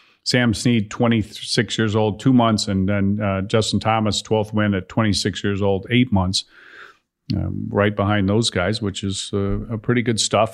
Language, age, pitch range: English, 40-59, 105-120 Hz